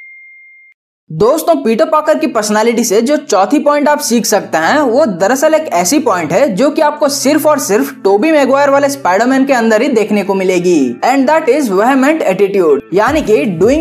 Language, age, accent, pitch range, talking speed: Hindi, 20-39, native, 215-300 Hz, 155 wpm